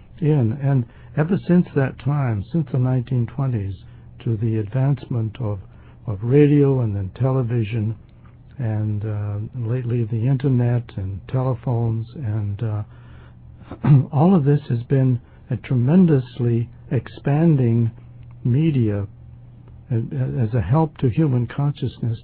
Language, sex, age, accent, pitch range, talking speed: English, male, 60-79, American, 115-135 Hz, 115 wpm